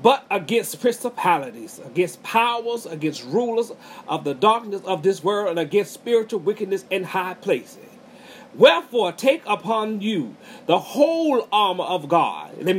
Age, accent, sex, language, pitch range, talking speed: 40-59, American, male, English, 195-260 Hz, 140 wpm